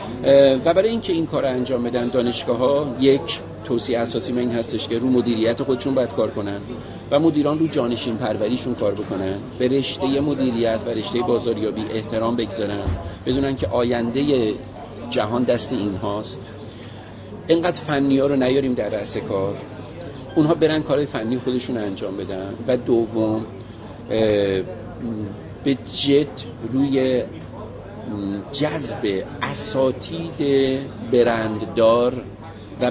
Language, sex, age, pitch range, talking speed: Persian, male, 50-69, 110-135 Hz, 125 wpm